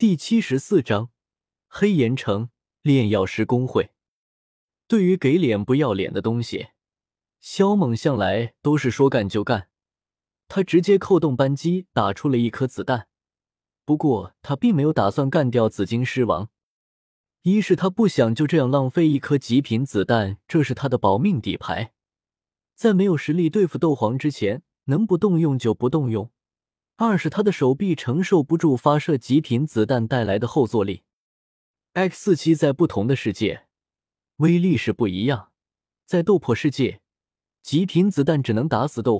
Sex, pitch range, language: male, 110-160 Hz, Chinese